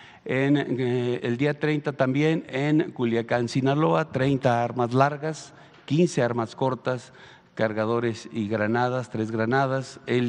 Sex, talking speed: male, 115 wpm